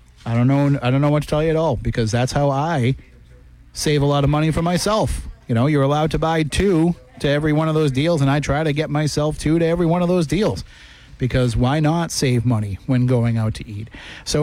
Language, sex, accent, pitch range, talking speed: English, male, American, 125-160 Hz, 250 wpm